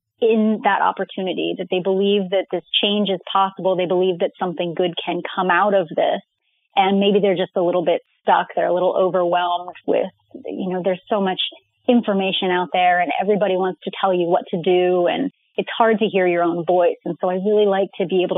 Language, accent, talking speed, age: English, American, 220 wpm, 30-49